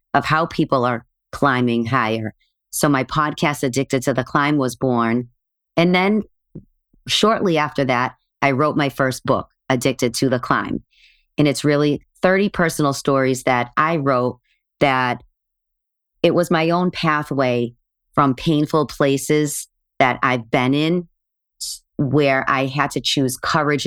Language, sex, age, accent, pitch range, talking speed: English, female, 40-59, American, 125-150 Hz, 145 wpm